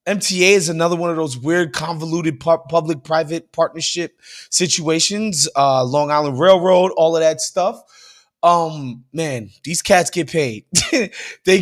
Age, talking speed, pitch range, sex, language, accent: 20-39, 140 wpm, 160-215 Hz, male, English, American